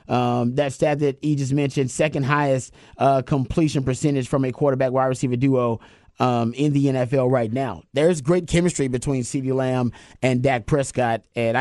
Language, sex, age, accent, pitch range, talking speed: English, male, 30-49, American, 130-160 Hz, 170 wpm